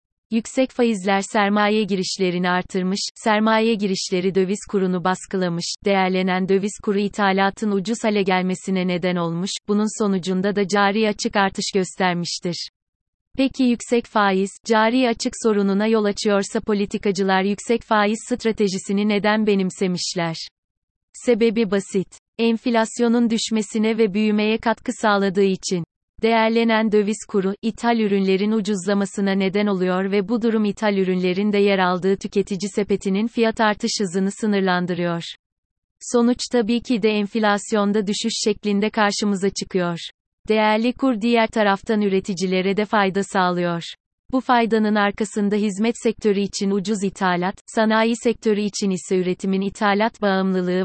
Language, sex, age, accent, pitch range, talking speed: Turkish, female, 30-49, native, 190-220 Hz, 120 wpm